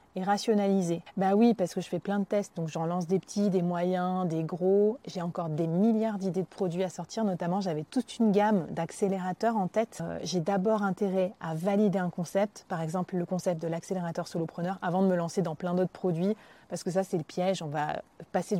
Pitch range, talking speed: 180-205 Hz, 225 wpm